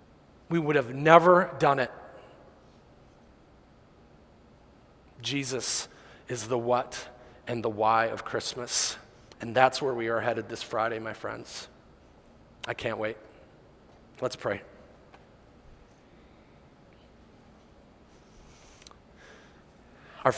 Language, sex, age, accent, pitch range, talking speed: English, male, 40-59, American, 115-135 Hz, 90 wpm